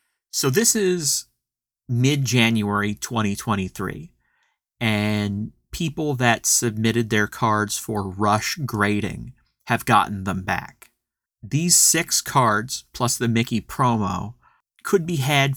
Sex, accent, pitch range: male, American, 105-130 Hz